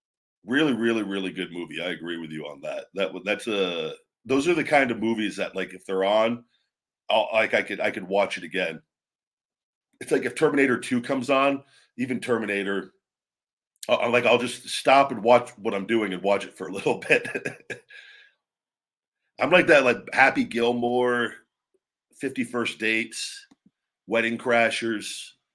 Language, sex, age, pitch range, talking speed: English, male, 40-59, 95-125 Hz, 165 wpm